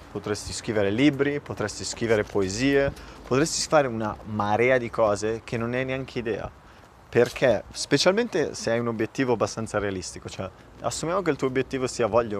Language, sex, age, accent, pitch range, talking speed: Italian, male, 30-49, native, 100-125 Hz, 160 wpm